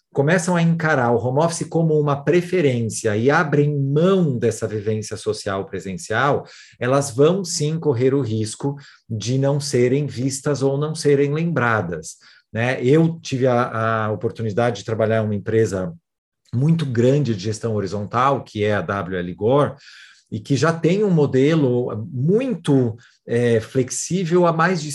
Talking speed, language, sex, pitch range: 145 wpm, Portuguese, male, 120-160 Hz